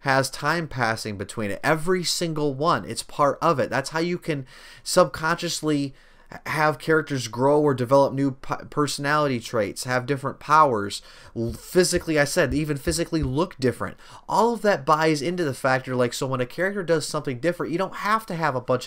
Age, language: 30-49, English